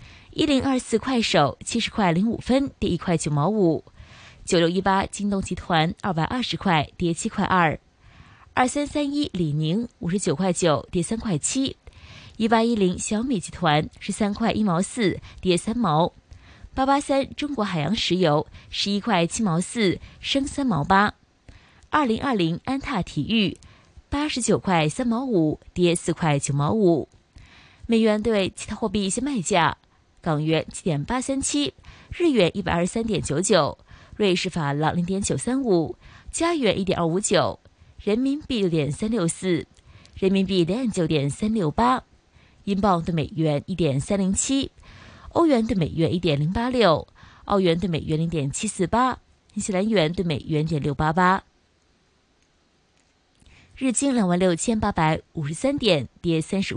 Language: Chinese